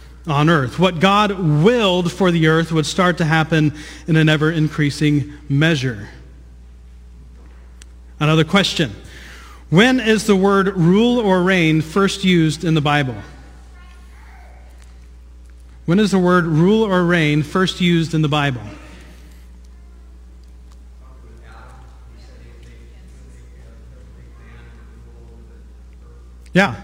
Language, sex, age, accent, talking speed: English, male, 40-59, American, 100 wpm